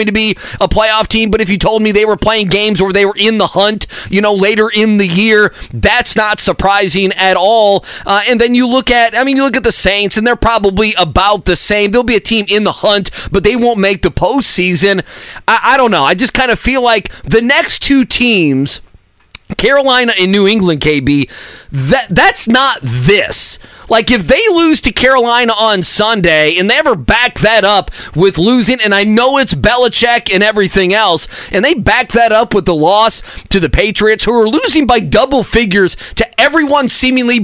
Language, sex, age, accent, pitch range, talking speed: English, male, 30-49, American, 195-240 Hz, 210 wpm